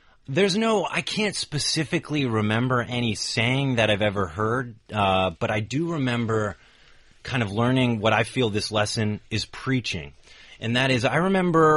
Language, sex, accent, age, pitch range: Chinese, male, American, 30-49, 105-135 Hz